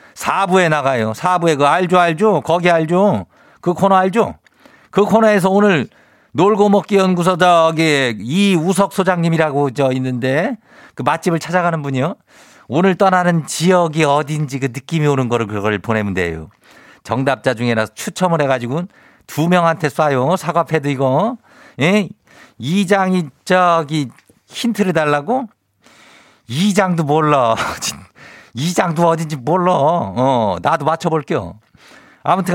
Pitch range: 140-195 Hz